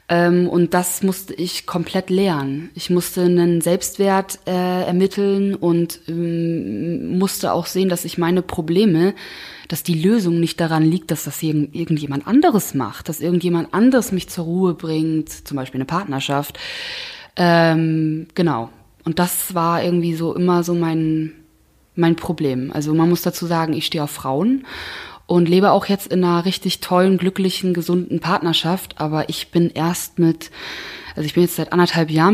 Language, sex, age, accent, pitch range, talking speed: German, female, 20-39, German, 165-195 Hz, 160 wpm